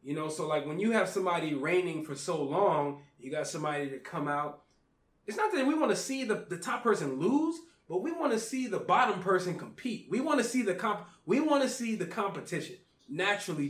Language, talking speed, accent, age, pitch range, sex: English, 230 wpm, American, 20-39, 165-230 Hz, male